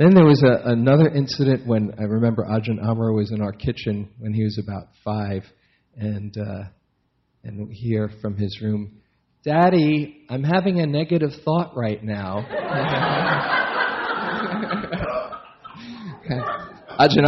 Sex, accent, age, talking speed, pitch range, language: male, American, 40-59, 125 wpm, 105-130 Hz, English